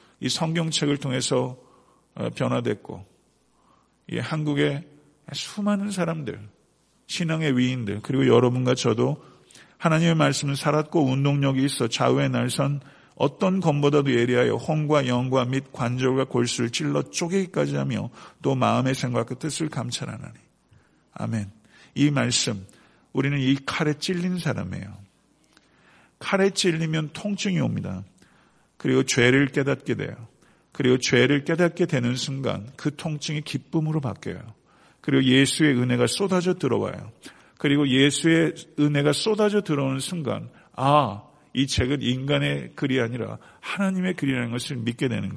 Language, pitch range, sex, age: Korean, 125-155 Hz, male, 50-69